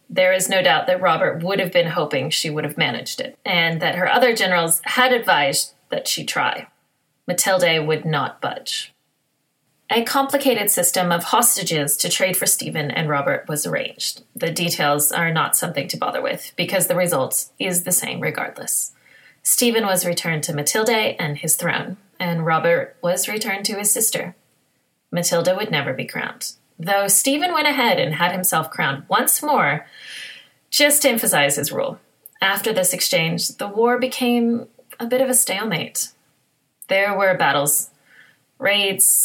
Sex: female